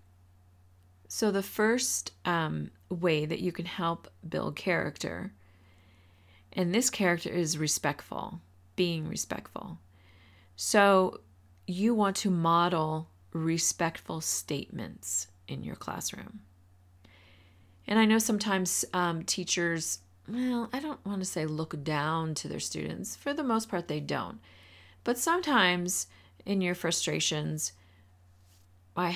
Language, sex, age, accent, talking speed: English, female, 40-59, American, 115 wpm